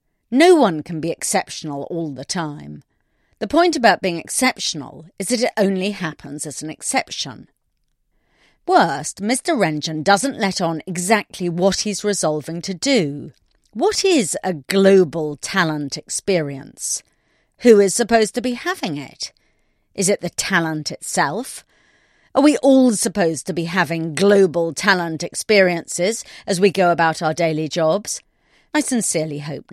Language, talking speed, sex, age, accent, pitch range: English, 145 wpm, female, 40-59, British, 160-245 Hz